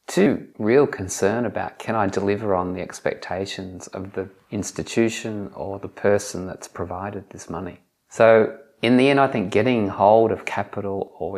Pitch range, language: 95-110 Hz, English